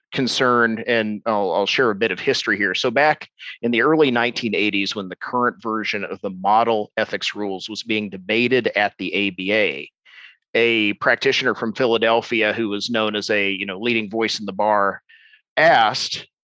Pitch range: 100-120 Hz